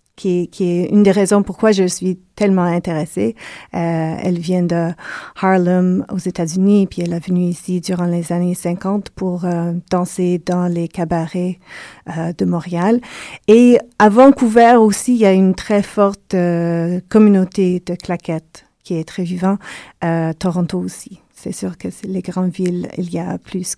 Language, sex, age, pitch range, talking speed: French, female, 40-59, 175-205 Hz, 170 wpm